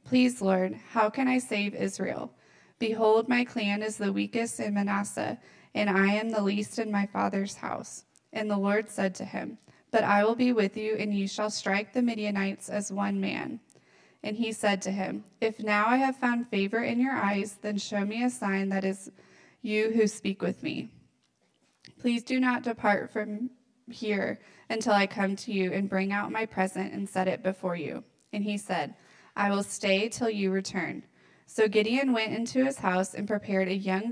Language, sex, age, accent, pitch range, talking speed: English, female, 20-39, American, 195-225 Hz, 195 wpm